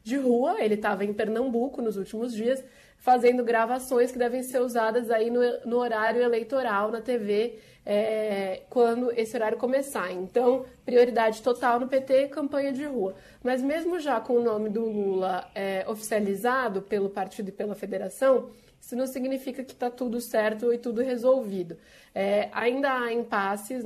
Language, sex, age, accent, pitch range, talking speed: Portuguese, female, 20-39, Brazilian, 210-250 Hz, 160 wpm